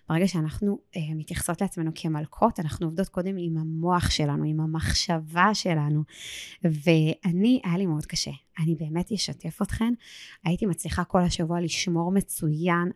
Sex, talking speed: female, 135 wpm